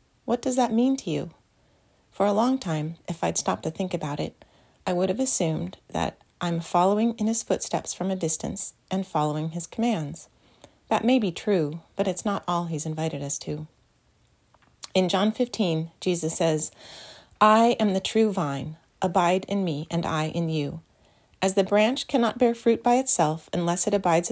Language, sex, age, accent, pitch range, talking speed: English, female, 30-49, American, 160-210 Hz, 185 wpm